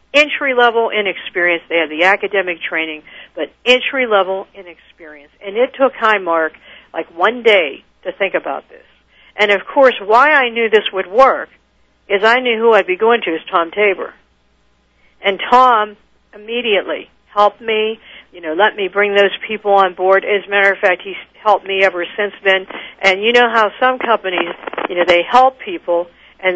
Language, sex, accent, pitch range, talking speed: English, female, American, 185-240 Hz, 175 wpm